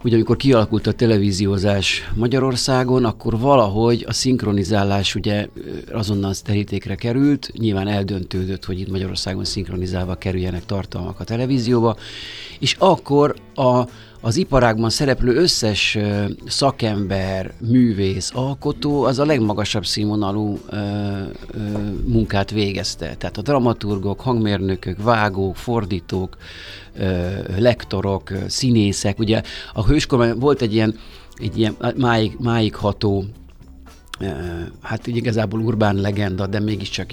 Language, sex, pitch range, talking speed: Hungarian, male, 95-115 Hz, 110 wpm